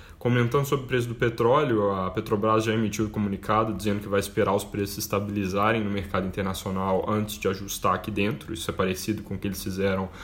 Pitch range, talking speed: 100-110 Hz, 210 wpm